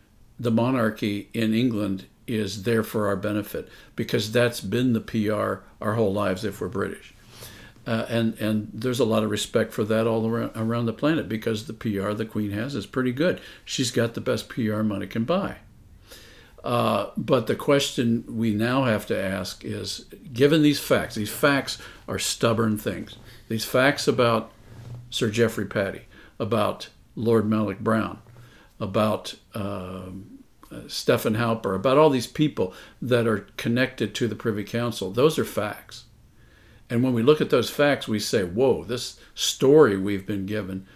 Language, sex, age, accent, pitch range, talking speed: English, male, 60-79, American, 105-120 Hz, 165 wpm